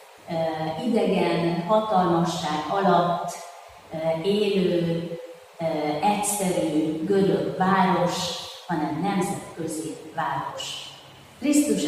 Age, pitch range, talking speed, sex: 30-49, 170-205 Hz, 70 wpm, female